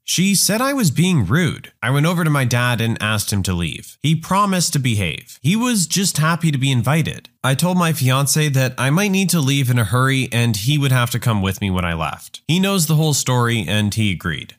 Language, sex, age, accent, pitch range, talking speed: English, male, 30-49, American, 120-170 Hz, 245 wpm